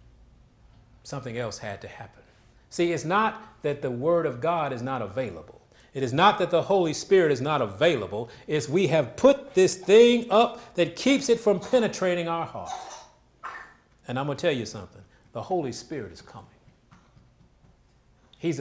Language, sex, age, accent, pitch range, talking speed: English, male, 40-59, American, 120-175 Hz, 170 wpm